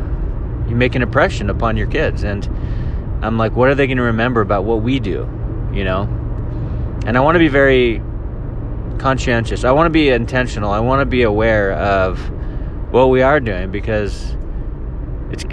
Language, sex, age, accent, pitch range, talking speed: English, male, 20-39, American, 105-125 Hz, 180 wpm